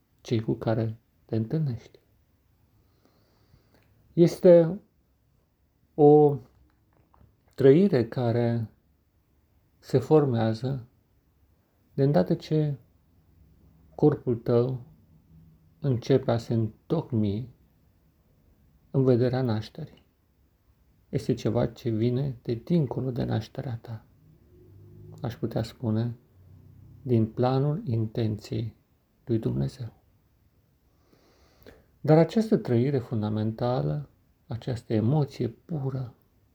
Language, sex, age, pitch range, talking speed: Romanian, male, 50-69, 95-130 Hz, 75 wpm